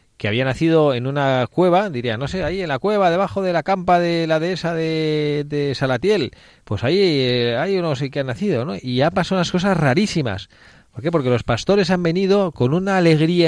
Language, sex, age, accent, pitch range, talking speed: Spanish, male, 40-59, Spanish, 110-155 Hz, 215 wpm